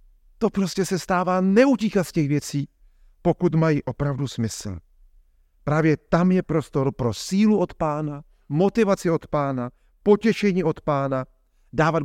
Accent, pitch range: native, 120-155 Hz